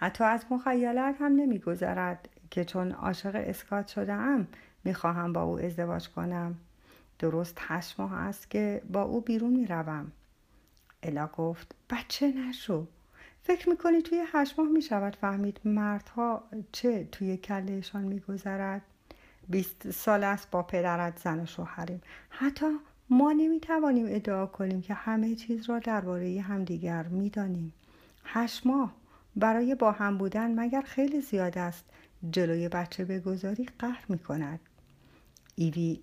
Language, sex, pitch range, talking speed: Persian, female, 180-235 Hz, 130 wpm